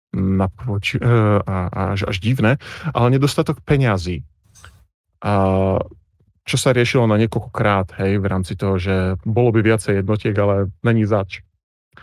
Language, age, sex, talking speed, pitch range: Slovak, 30-49, male, 135 wpm, 95-120 Hz